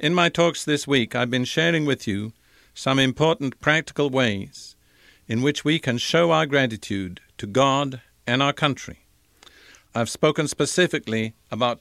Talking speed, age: 150 wpm, 50-69